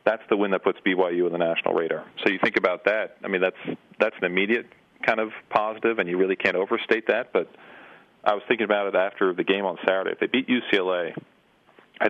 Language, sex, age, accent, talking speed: English, male, 40-59, American, 230 wpm